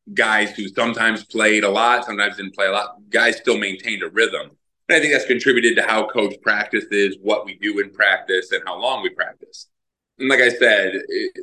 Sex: male